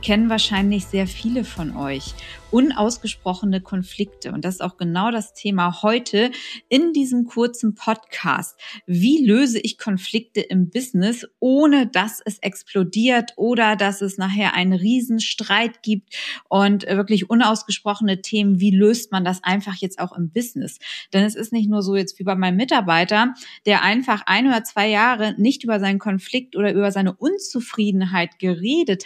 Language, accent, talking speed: German, German, 155 wpm